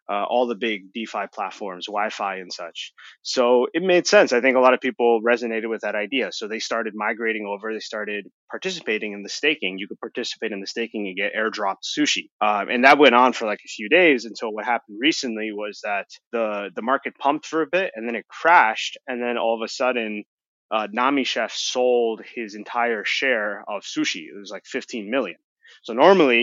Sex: male